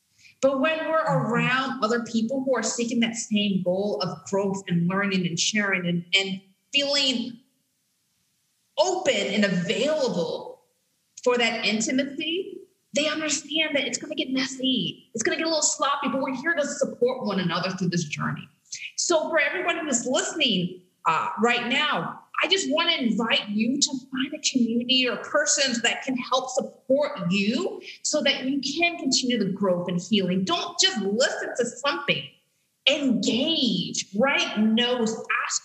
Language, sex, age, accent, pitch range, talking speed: English, female, 30-49, American, 205-285 Hz, 155 wpm